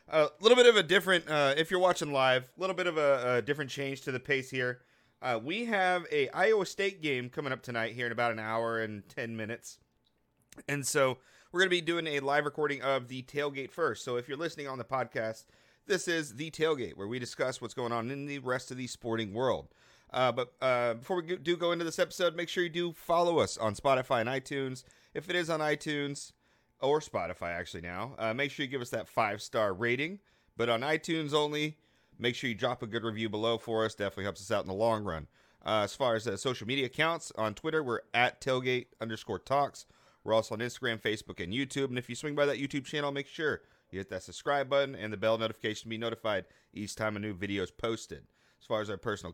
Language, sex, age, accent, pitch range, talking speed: English, male, 30-49, American, 115-150 Hz, 235 wpm